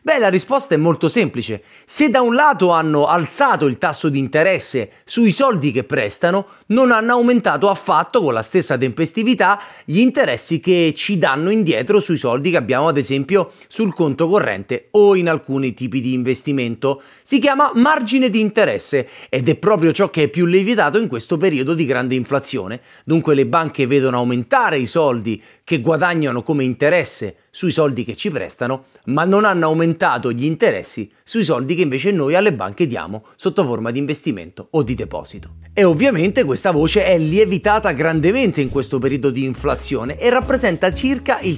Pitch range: 135-200 Hz